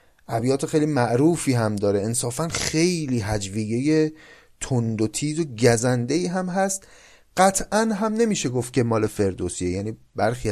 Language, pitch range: Persian, 105-155 Hz